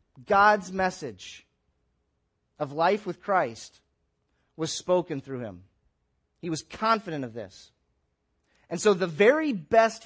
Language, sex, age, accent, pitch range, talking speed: English, male, 30-49, American, 150-225 Hz, 120 wpm